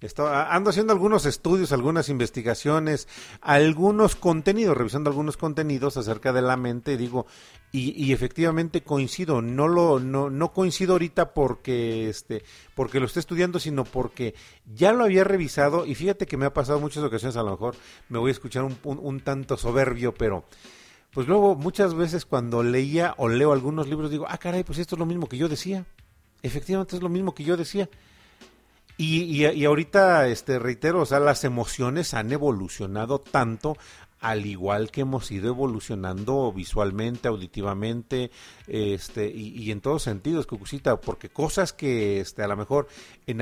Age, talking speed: 40-59, 170 wpm